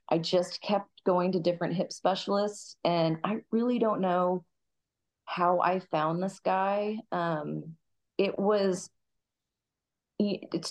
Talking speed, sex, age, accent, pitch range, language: 125 wpm, female, 30-49, American, 150-185 Hz, English